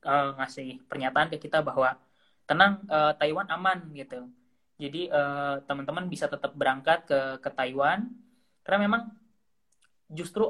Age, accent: 20-39, native